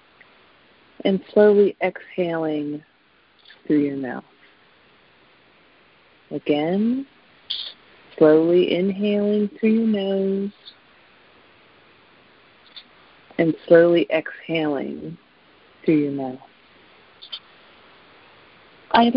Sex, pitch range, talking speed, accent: female, 150-200 Hz, 60 wpm, American